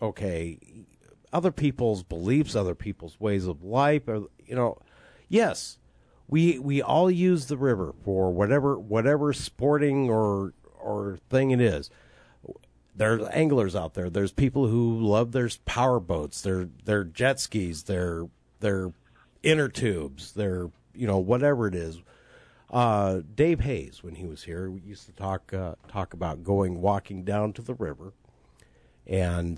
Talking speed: 150 wpm